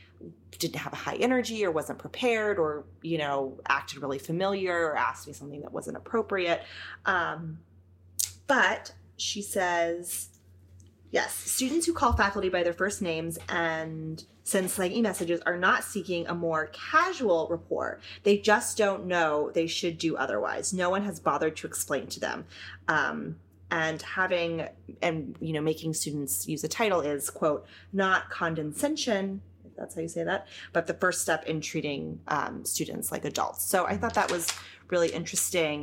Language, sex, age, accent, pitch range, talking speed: English, female, 30-49, American, 135-175 Hz, 165 wpm